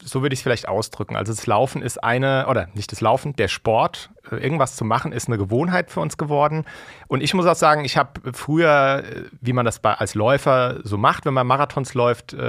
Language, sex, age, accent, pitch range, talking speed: German, male, 40-59, German, 120-155 Hz, 215 wpm